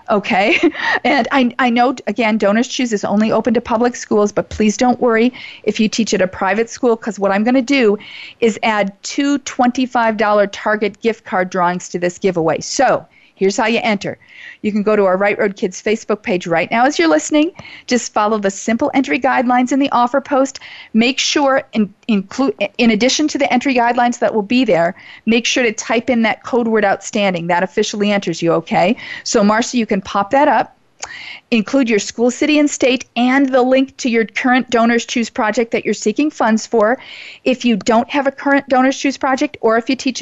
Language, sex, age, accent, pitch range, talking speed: English, female, 40-59, American, 215-270 Hz, 205 wpm